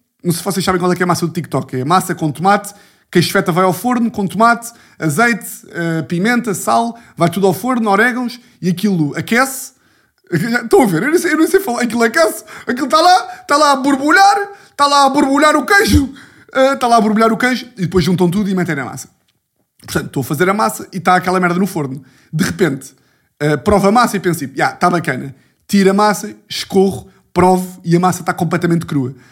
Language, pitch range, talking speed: Portuguese, 180-245 Hz, 225 wpm